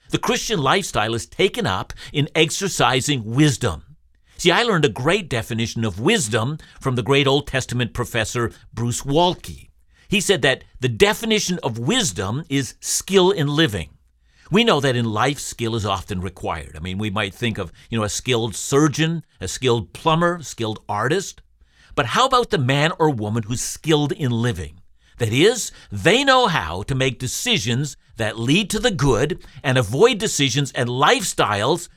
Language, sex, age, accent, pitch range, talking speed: English, male, 50-69, American, 110-160 Hz, 170 wpm